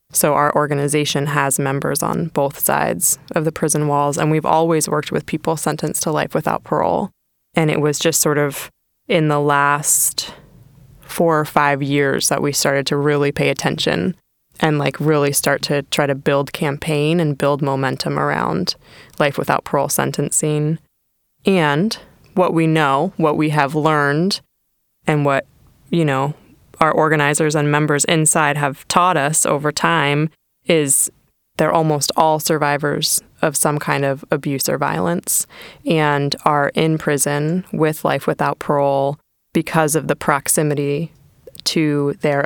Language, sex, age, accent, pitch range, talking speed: English, female, 20-39, American, 145-155 Hz, 155 wpm